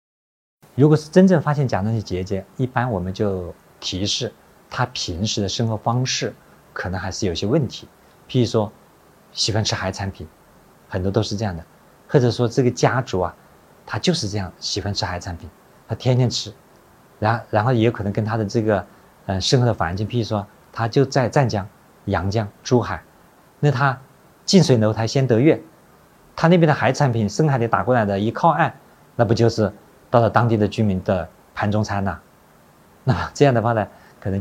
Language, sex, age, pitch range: Chinese, male, 50-69, 100-125 Hz